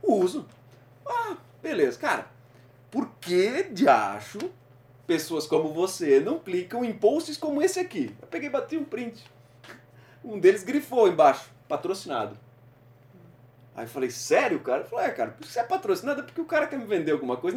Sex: male